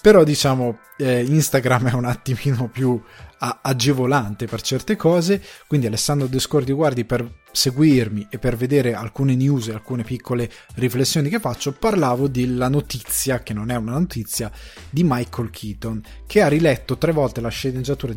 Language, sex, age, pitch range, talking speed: Italian, male, 20-39, 115-135 Hz, 155 wpm